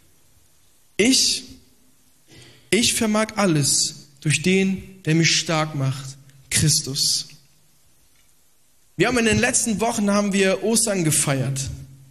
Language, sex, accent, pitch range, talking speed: German, male, German, 140-205 Hz, 105 wpm